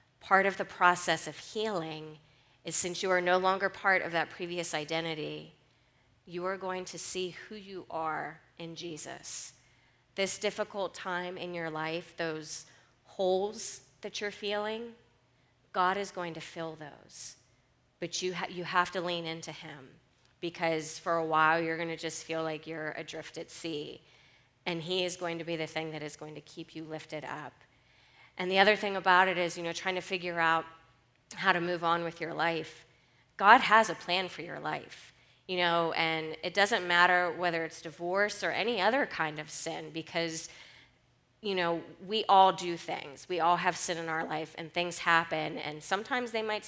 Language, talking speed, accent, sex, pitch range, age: English, 185 wpm, American, female, 155-180 Hz, 30-49